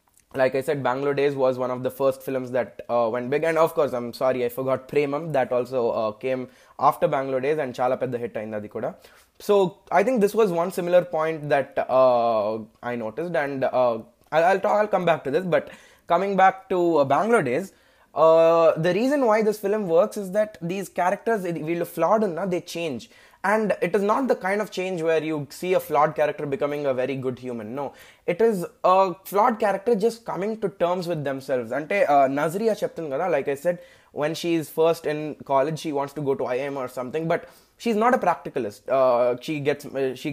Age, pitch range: 20-39, 135-185 Hz